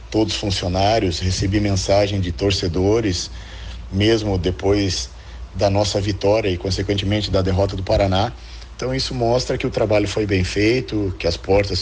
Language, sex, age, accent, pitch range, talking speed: Portuguese, male, 40-59, Brazilian, 90-110 Hz, 145 wpm